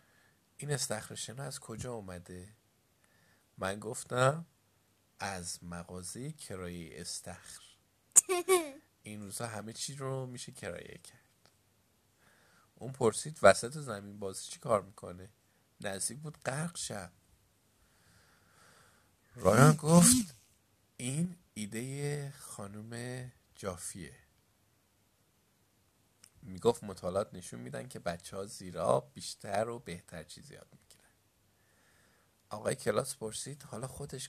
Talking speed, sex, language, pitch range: 100 wpm, male, Persian, 95-130 Hz